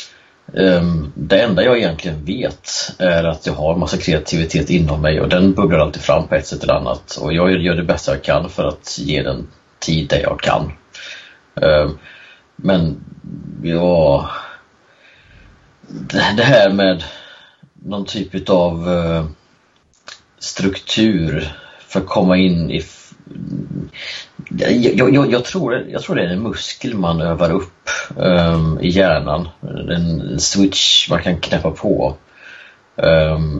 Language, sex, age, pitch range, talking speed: Swedish, male, 30-49, 80-95 Hz, 140 wpm